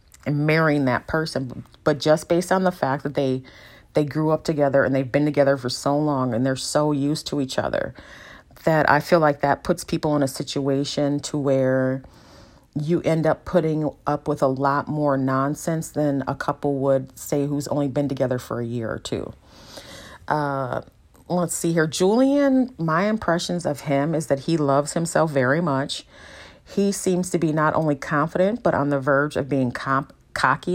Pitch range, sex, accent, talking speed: 135-155 Hz, female, American, 185 wpm